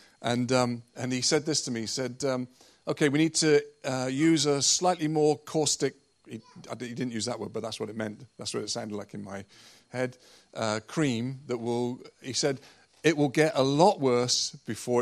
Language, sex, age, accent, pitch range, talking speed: English, male, 40-59, British, 110-145 Hz, 210 wpm